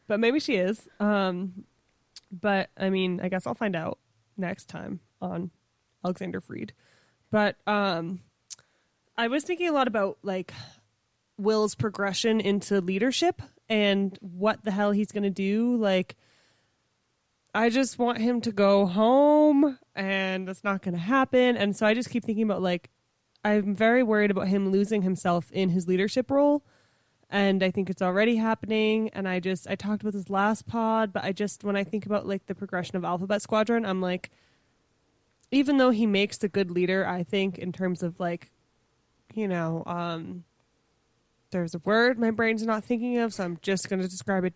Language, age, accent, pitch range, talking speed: English, 20-39, American, 180-220 Hz, 180 wpm